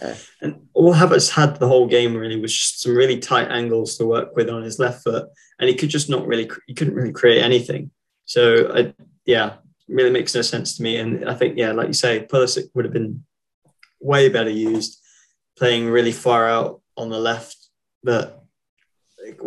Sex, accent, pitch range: male, British, 115-140 Hz